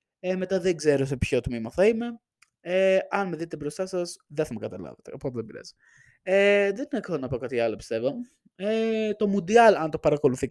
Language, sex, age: Greek, male, 20-39